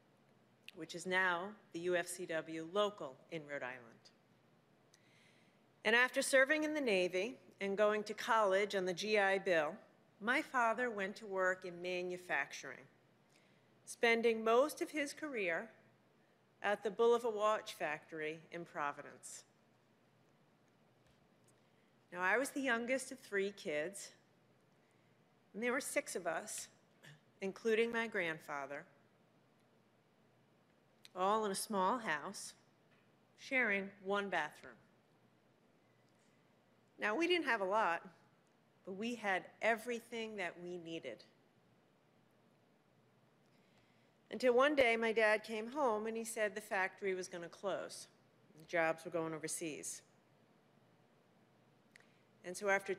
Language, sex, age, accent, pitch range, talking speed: English, female, 40-59, American, 180-230 Hz, 120 wpm